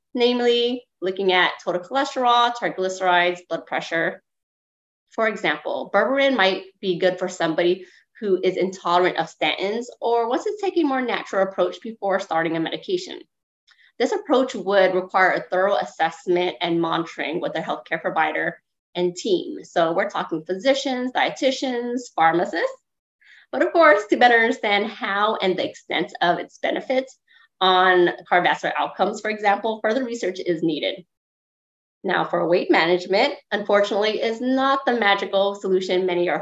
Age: 20-39